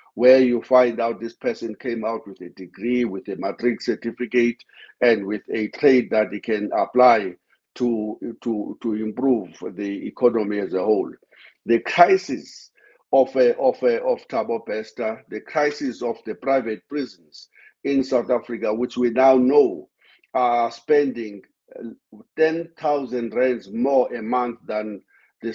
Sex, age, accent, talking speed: male, 50-69, South African, 145 wpm